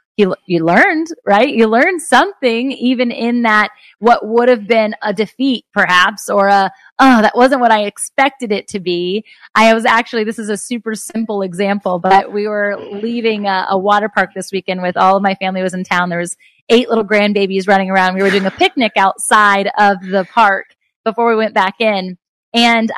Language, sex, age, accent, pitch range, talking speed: English, female, 20-39, American, 200-260 Hz, 200 wpm